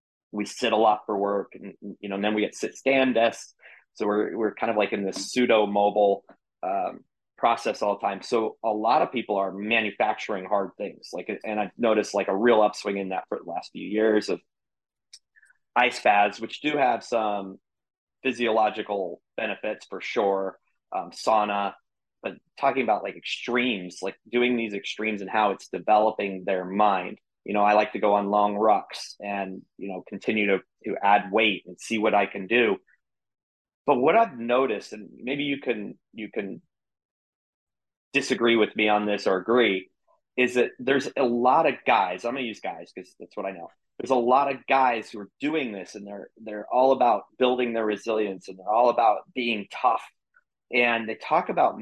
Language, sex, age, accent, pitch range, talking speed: English, male, 30-49, American, 100-115 Hz, 190 wpm